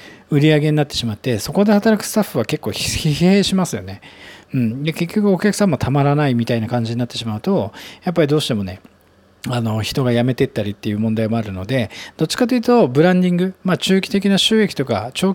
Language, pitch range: Japanese, 120-190 Hz